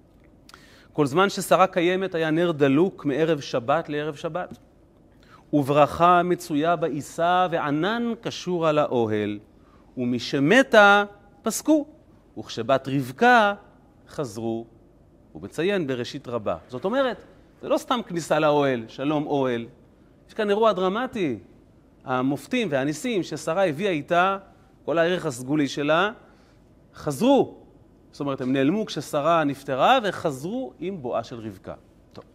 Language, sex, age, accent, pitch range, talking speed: Hebrew, male, 30-49, native, 125-180 Hz, 115 wpm